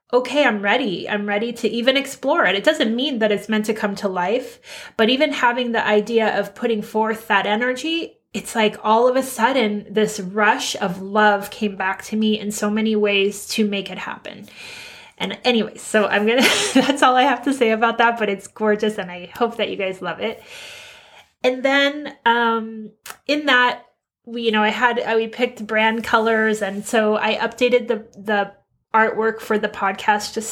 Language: English